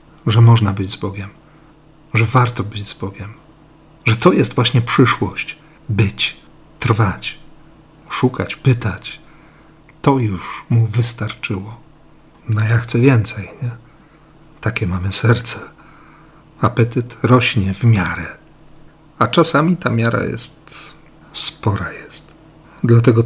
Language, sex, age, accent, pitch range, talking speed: Polish, male, 50-69, native, 110-155 Hz, 110 wpm